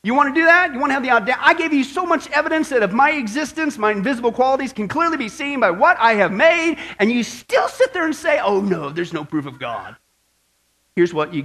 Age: 40-59